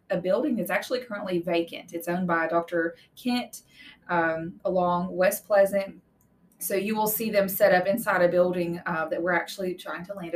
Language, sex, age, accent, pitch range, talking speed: English, female, 20-39, American, 170-210 Hz, 180 wpm